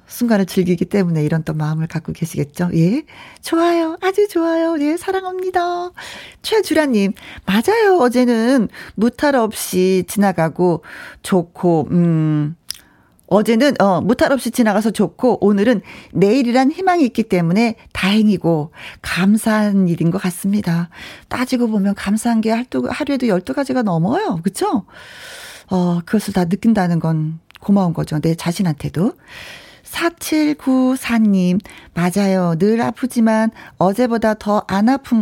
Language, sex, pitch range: Korean, female, 175-250 Hz